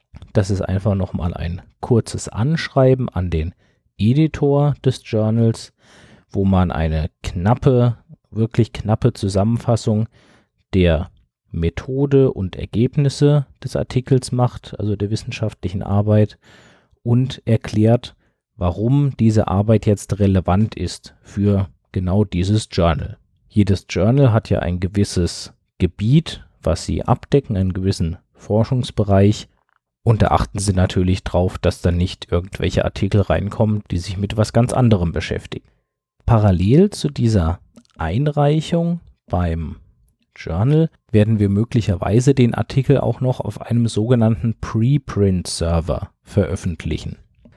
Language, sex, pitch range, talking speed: German, male, 90-120 Hz, 115 wpm